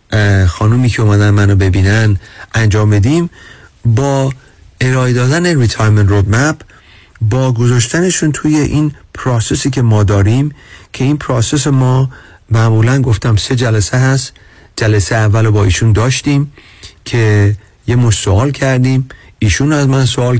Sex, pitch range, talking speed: male, 105-130 Hz, 125 wpm